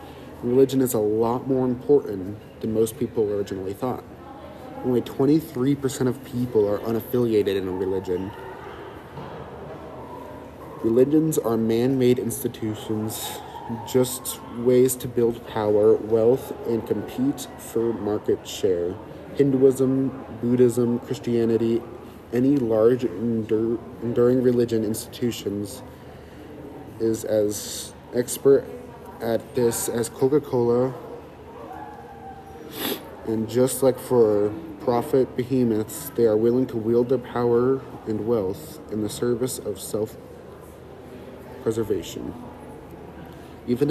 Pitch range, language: 110-125 Hz, English